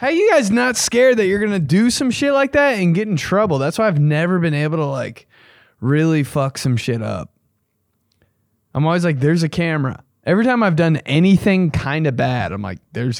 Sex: male